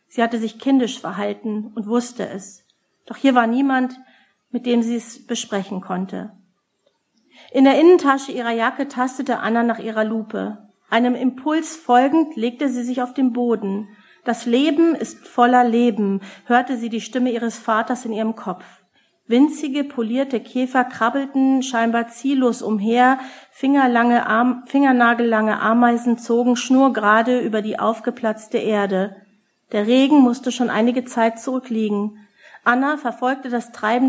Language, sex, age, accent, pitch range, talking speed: German, female, 40-59, German, 220-255 Hz, 135 wpm